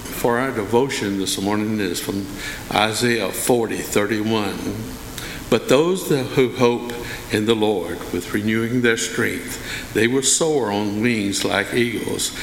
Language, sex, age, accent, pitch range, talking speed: English, male, 60-79, American, 100-115 Hz, 135 wpm